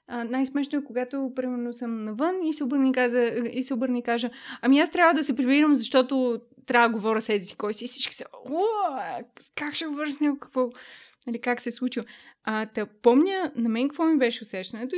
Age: 20-39